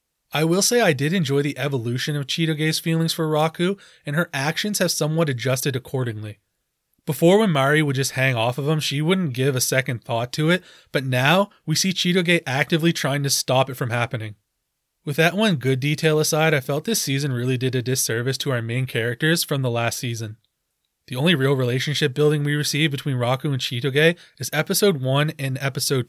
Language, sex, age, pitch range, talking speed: English, male, 20-39, 130-155 Hz, 200 wpm